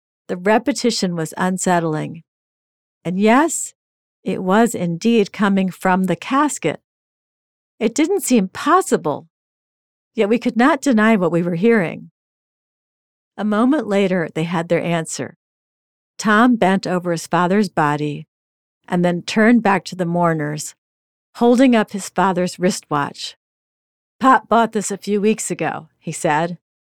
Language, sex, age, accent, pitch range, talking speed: English, female, 50-69, American, 170-220 Hz, 135 wpm